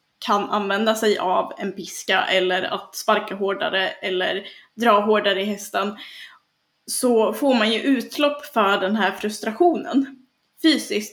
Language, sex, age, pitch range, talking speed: Swedish, female, 10-29, 200-235 Hz, 135 wpm